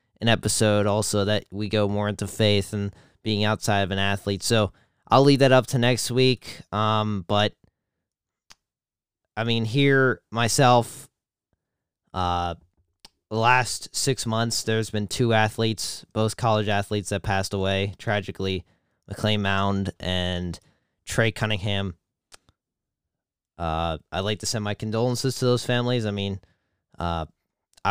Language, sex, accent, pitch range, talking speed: English, male, American, 95-115 Hz, 135 wpm